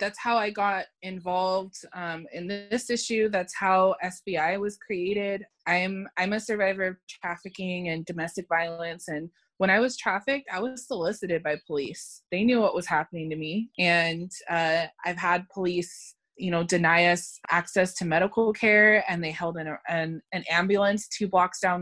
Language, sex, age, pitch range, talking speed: English, female, 20-39, 165-195 Hz, 175 wpm